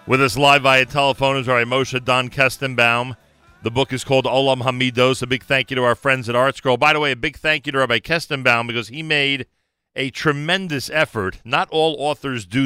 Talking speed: 215 wpm